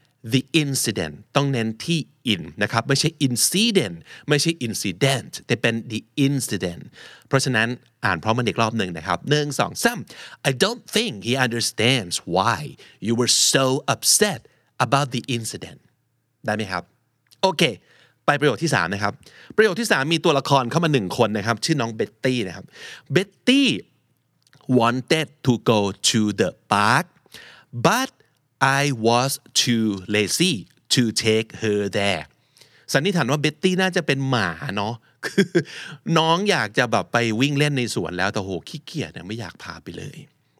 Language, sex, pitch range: Thai, male, 110-140 Hz